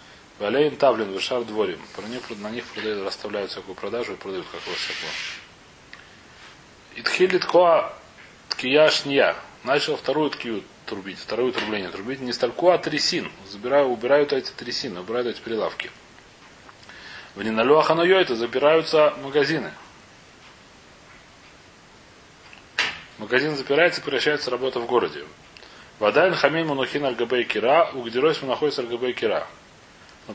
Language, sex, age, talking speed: Russian, male, 30-49, 110 wpm